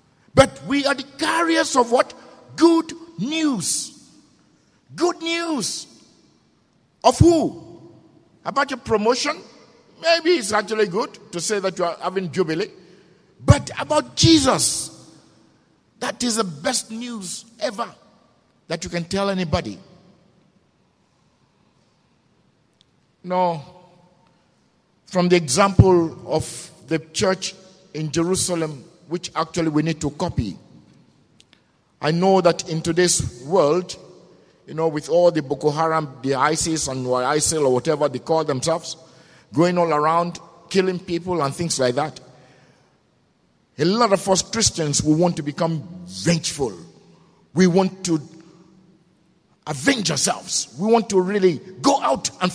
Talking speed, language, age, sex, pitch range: 125 wpm, English, 50-69, male, 160-215 Hz